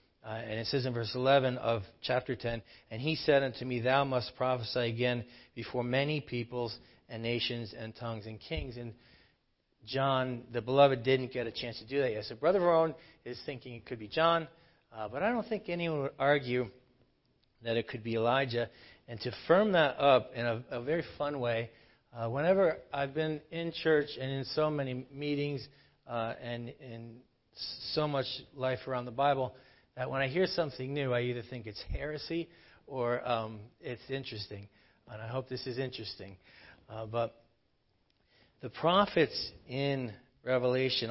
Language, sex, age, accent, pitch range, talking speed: English, male, 40-59, American, 115-140 Hz, 175 wpm